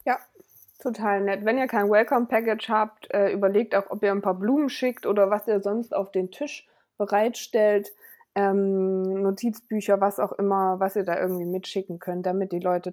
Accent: German